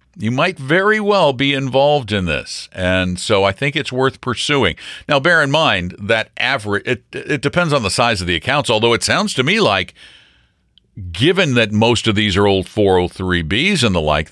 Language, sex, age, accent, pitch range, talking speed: English, male, 50-69, American, 95-160 Hz, 195 wpm